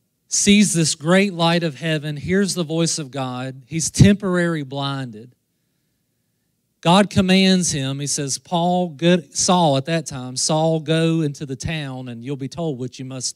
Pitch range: 140-190 Hz